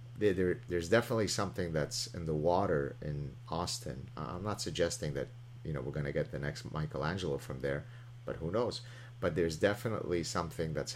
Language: English